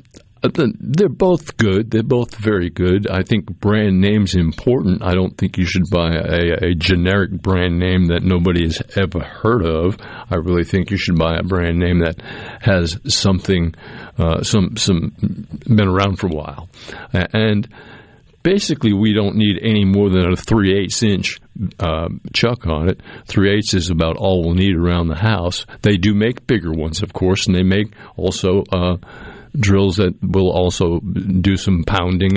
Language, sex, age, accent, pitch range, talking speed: English, male, 50-69, American, 90-110 Hz, 170 wpm